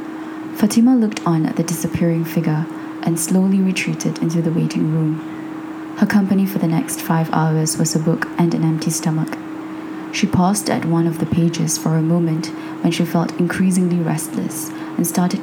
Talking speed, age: 175 wpm, 20-39